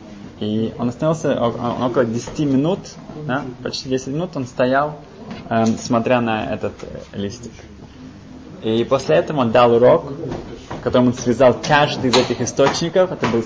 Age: 20-39